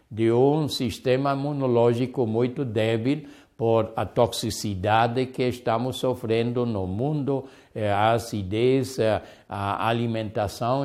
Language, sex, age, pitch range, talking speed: Portuguese, male, 60-79, 110-135 Hz, 100 wpm